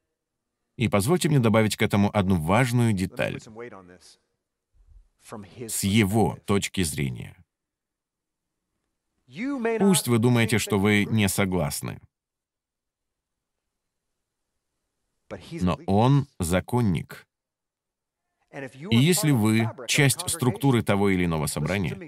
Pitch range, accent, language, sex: 95-130 Hz, native, Russian, male